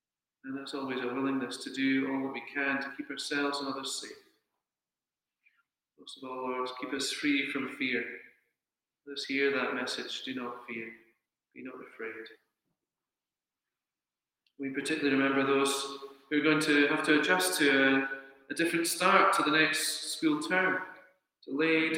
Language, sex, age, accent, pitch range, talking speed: English, male, 40-59, British, 135-155 Hz, 160 wpm